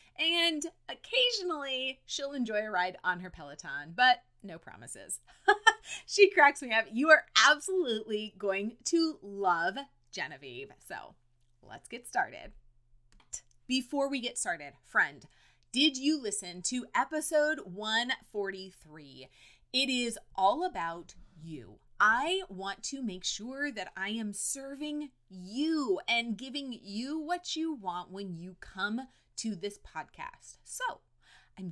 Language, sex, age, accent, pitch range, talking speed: English, female, 30-49, American, 190-305 Hz, 125 wpm